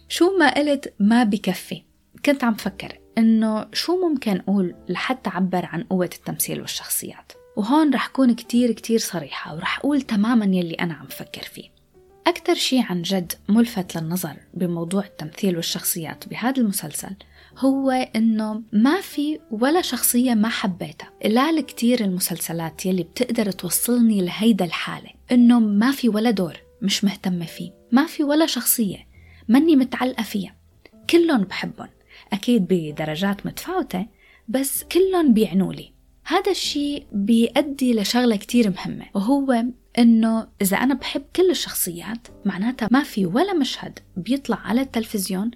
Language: Arabic